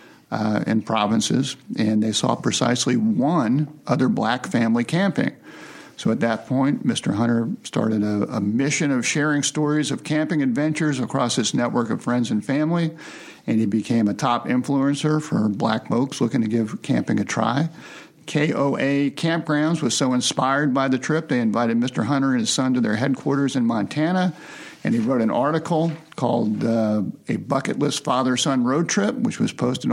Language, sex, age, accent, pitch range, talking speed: English, male, 50-69, American, 120-155 Hz, 175 wpm